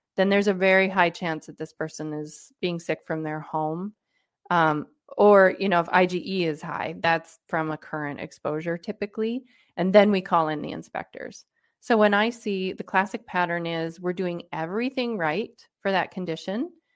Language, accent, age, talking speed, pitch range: English, American, 30-49, 180 wpm, 165-210 Hz